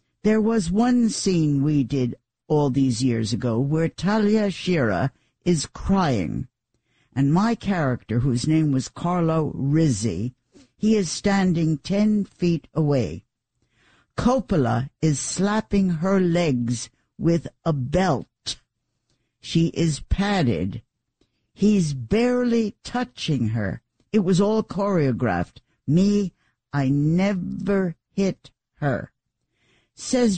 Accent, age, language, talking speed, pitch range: American, 60-79, English, 105 wpm, 130-195 Hz